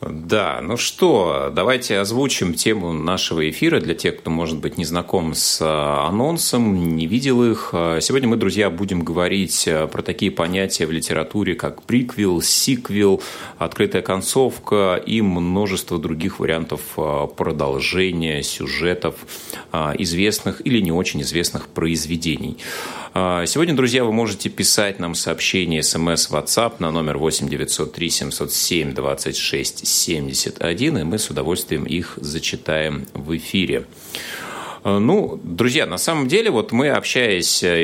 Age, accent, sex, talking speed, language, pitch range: 30-49, native, male, 120 wpm, Russian, 80-105 Hz